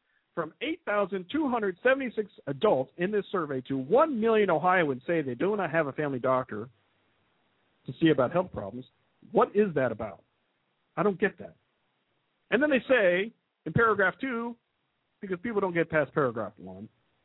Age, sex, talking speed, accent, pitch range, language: 50-69, male, 155 wpm, American, 130-195 Hz, English